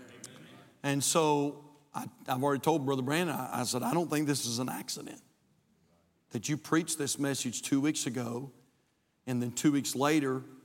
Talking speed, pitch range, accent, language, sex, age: 175 wpm, 125-155 Hz, American, English, male, 50-69